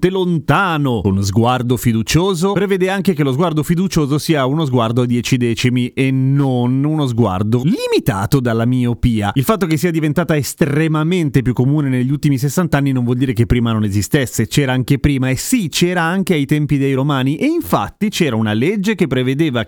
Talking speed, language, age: 185 wpm, Italian, 30-49